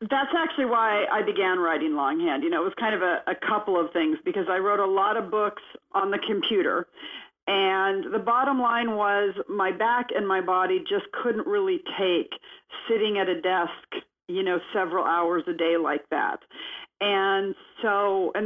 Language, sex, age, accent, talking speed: English, female, 50-69, American, 185 wpm